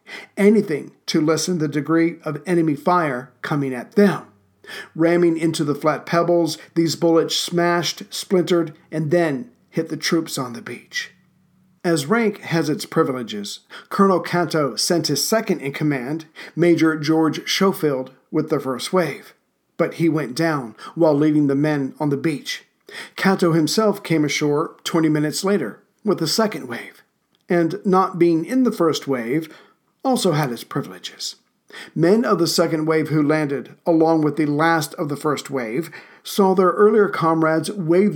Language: English